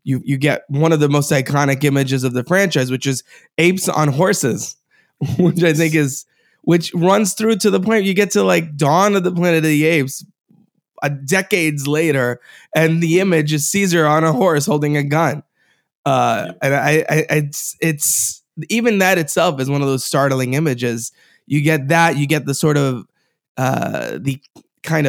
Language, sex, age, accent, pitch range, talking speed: English, male, 20-39, American, 145-170 Hz, 185 wpm